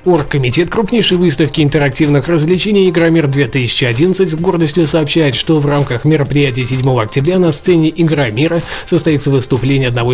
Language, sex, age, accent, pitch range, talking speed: Russian, male, 20-39, native, 135-175 Hz, 125 wpm